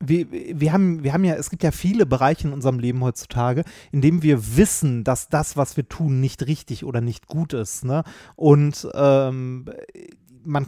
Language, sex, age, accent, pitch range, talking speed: German, male, 30-49, German, 145-185 Hz, 190 wpm